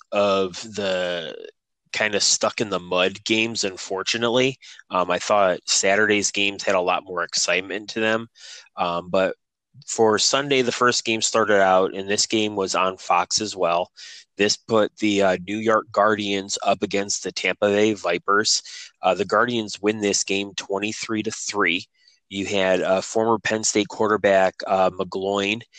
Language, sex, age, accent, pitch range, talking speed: English, male, 20-39, American, 95-110 Hz, 165 wpm